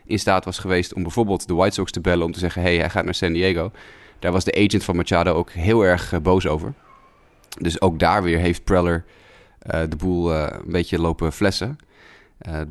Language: Dutch